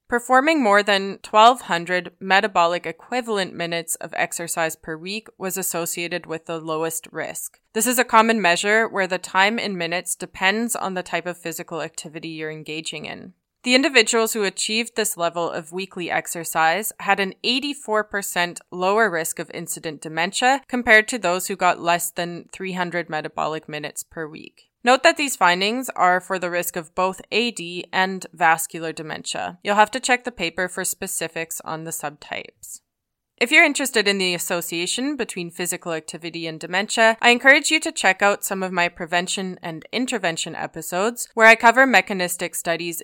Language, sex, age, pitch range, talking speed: English, female, 20-39, 170-220 Hz, 165 wpm